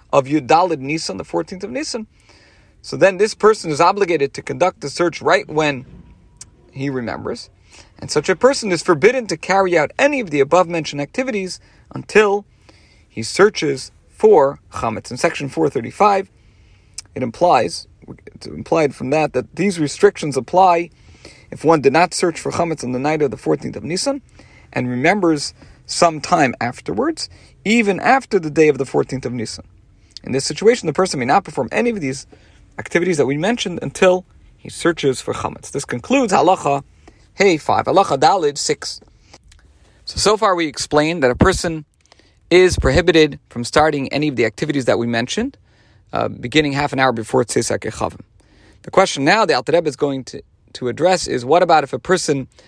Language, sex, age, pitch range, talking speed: English, male, 40-59, 125-185 Hz, 175 wpm